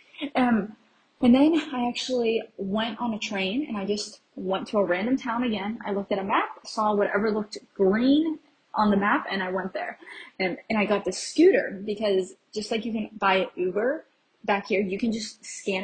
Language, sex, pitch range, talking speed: English, female, 190-235 Hz, 205 wpm